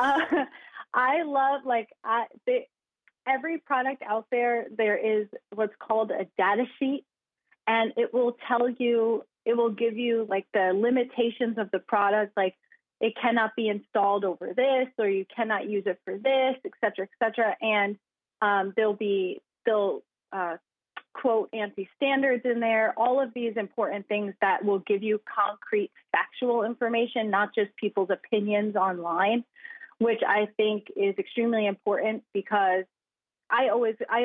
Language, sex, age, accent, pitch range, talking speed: English, female, 30-49, American, 200-240 Hz, 150 wpm